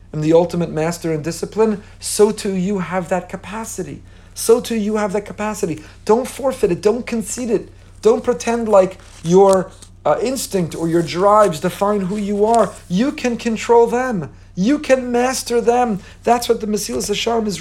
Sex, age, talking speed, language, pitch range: male, 50-69, 175 wpm, English, 150-210 Hz